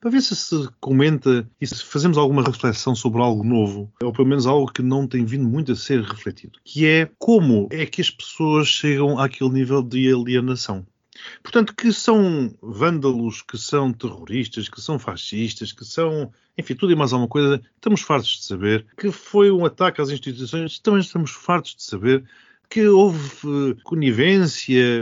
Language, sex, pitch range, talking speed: Portuguese, male, 115-155 Hz, 175 wpm